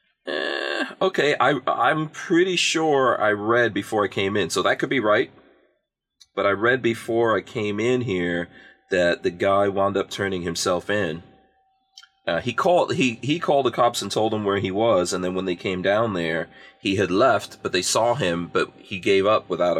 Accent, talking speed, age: American, 205 wpm, 30-49